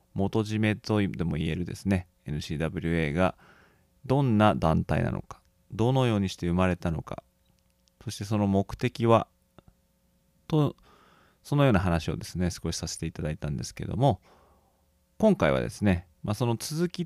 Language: Japanese